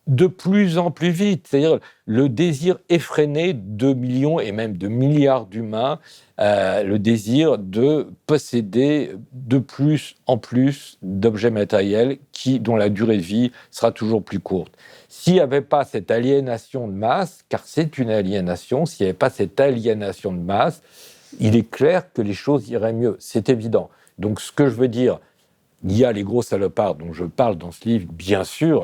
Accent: French